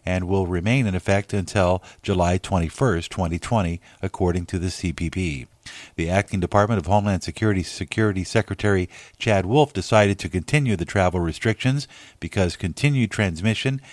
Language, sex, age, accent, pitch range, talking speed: English, male, 50-69, American, 90-115 Hz, 140 wpm